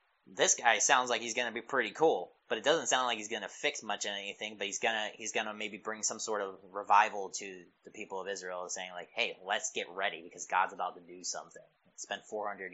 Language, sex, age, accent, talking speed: English, male, 20-39, American, 260 wpm